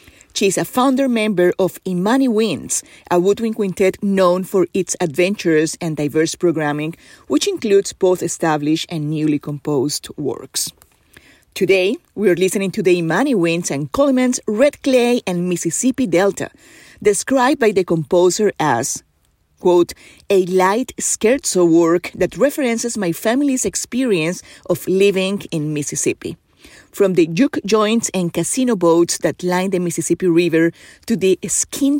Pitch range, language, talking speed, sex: 170-215 Hz, English, 140 wpm, female